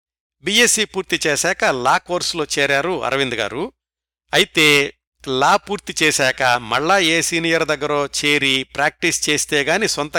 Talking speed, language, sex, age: 120 wpm, Telugu, male, 60-79